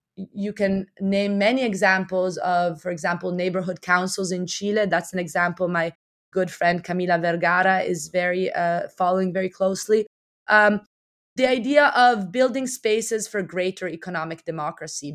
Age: 20-39